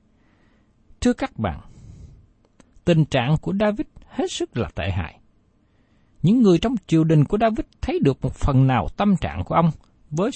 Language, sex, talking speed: Vietnamese, male, 170 wpm